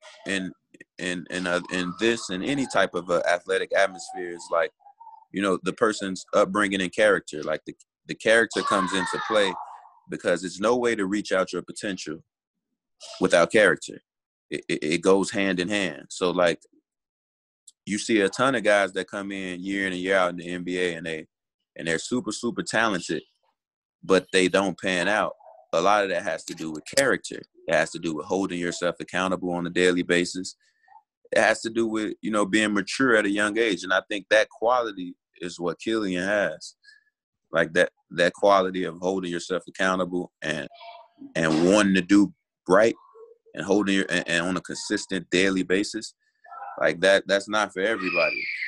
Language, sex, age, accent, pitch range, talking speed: French, male, 20-39, American, 90-115 Hz, 185 wpm